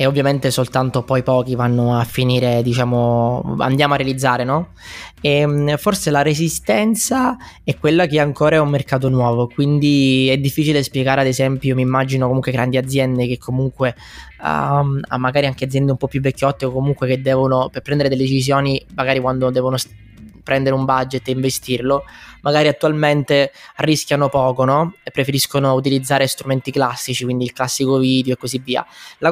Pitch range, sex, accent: 130-145 Hz, male, native